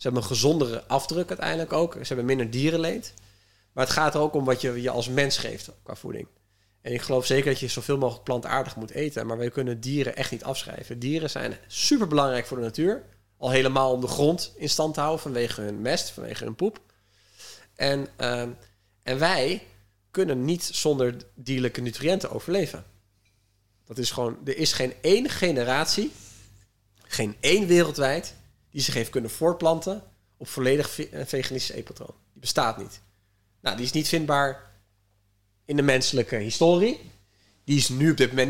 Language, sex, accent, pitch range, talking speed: Dutch, male, Dutch, 110-150 Hz, 175 wpm